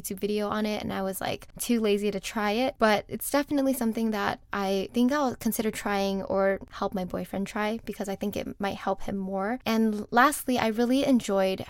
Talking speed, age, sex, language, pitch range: 210 wpm, 10-29, female, English, 200-240 Hz